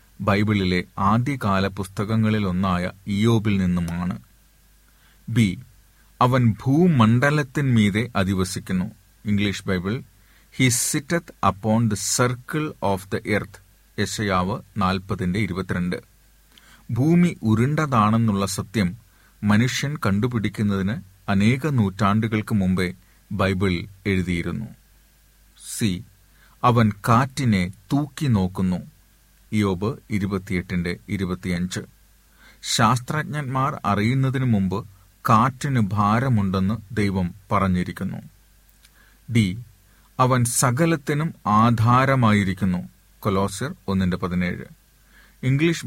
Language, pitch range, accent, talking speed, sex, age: Malayalam, 95-120 Hz, native, 70 wpm, male, 40-59